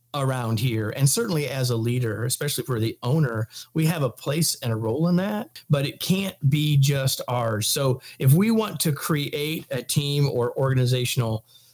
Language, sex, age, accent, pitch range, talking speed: English, male, 40-59, American, 125-160 Hz, 185 wpm